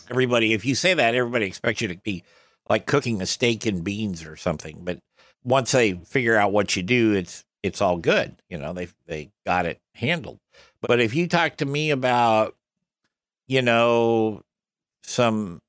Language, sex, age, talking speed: English, male, 60-79, 180 wpm